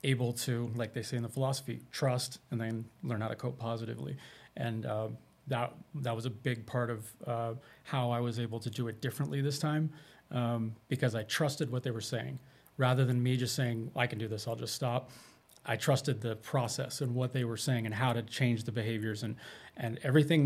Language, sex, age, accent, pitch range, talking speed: English, male, 30-49, American, 115-130 Hz, 215 wpm